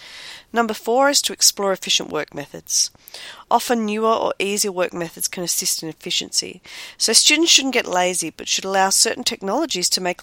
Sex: female